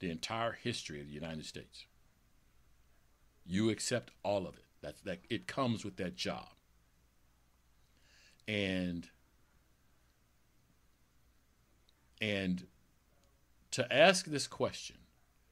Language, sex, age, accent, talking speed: English, male, 60-79, American, 95 wpm